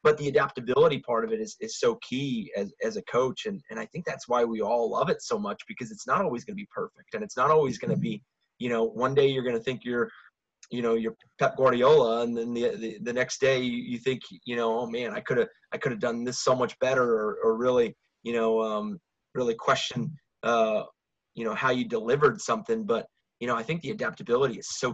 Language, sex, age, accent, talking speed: English, male, 30-49, American, 250 wpm